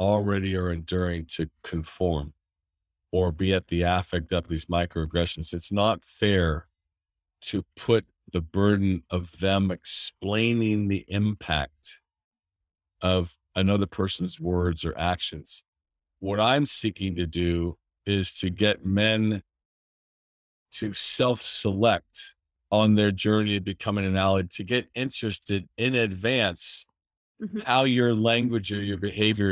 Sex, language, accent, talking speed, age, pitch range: male, English, American, 120 wpm, 50-69, 85-110 Hz